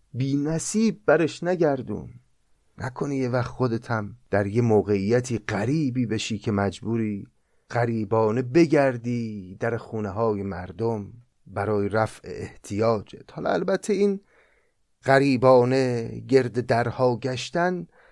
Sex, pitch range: male, 115-155 Hz